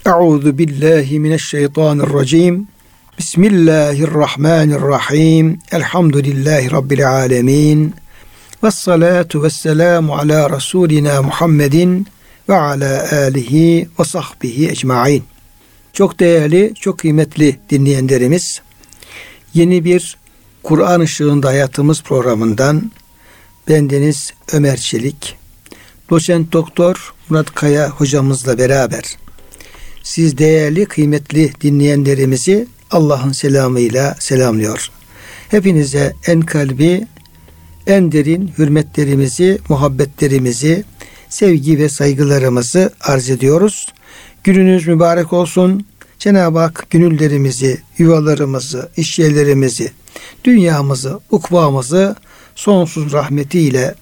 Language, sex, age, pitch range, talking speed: Turkish, male, 60-79, 140-170 Hz, 75 wpm